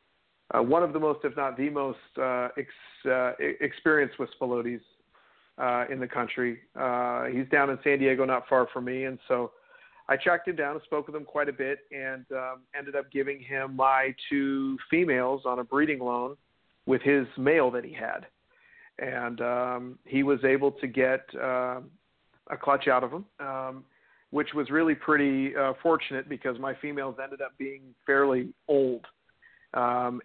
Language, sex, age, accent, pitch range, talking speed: English, male, 50-69, American, 125-140 Hz, 180 wpm